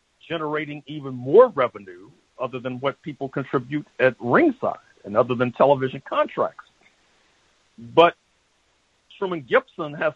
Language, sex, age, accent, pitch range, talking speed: English, male, 60-79, American, 130-170 Hz, 120 wpm